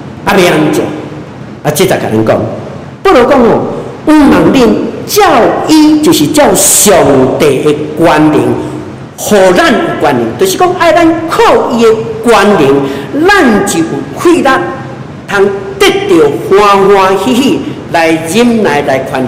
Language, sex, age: Chinese, male, 50-69